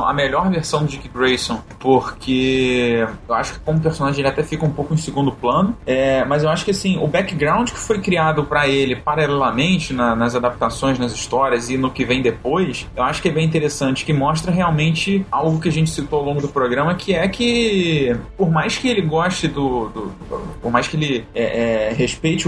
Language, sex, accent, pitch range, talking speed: Portuguese, male, Brazilian, 130-165 Hz, 205 wpm